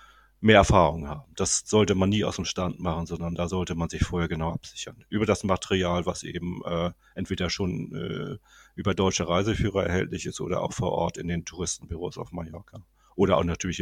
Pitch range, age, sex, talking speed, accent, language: 85-100 Hz, 40-59, male, 195 wpm, German, German